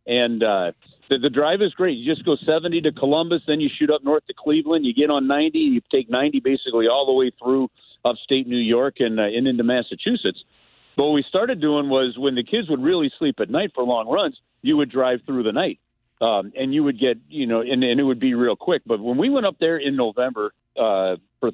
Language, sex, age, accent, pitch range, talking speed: English, male, 50-69, American, 120-155 Hz, 240 wpm